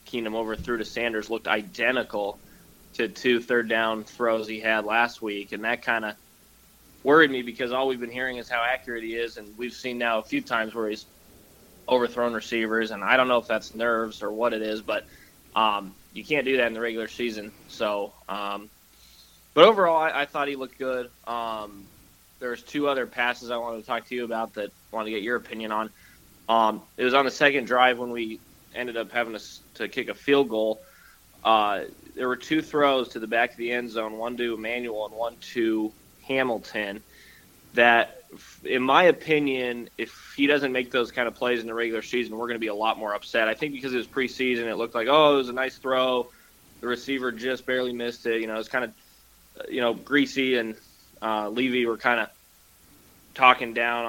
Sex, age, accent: male, 20-39, American